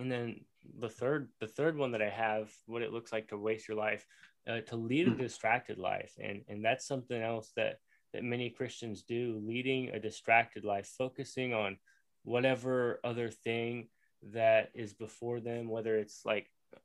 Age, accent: 20-39, American